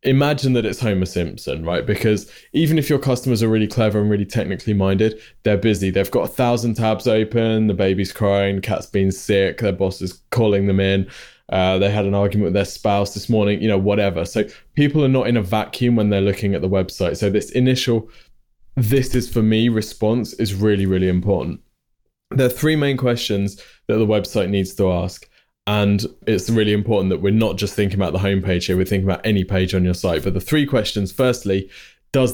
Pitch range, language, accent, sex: 95-120 Hz, English, British, male